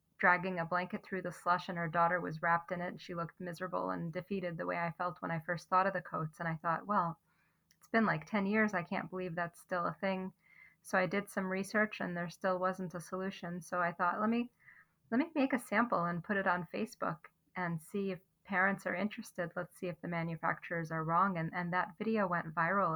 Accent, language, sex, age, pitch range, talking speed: American, English, female, 30-49, 170-190 Hz, 240 wpm